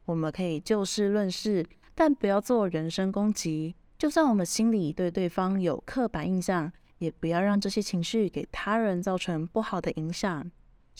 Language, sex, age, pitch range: Chinese, female, 20-39, 175-230 Hz